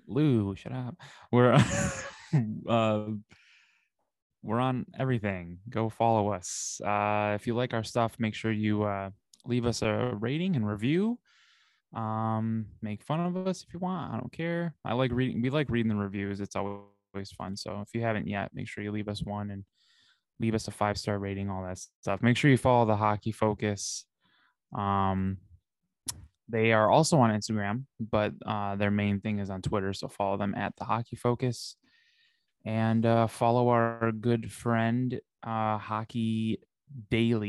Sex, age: male, 20-39